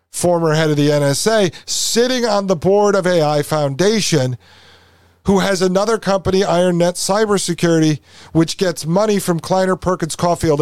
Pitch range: 135-190 Hz